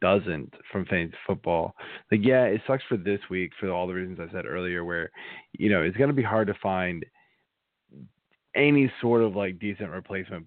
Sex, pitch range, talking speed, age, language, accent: male, 95-120 Hz, 195 wpm, 20-39, English, American